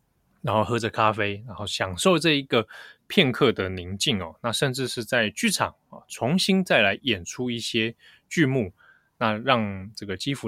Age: 20-39